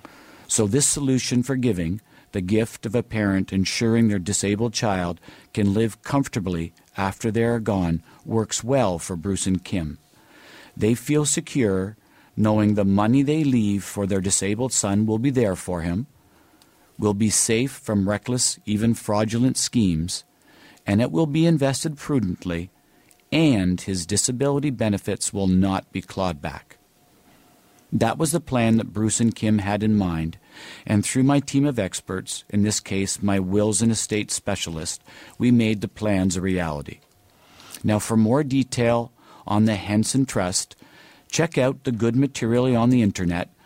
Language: English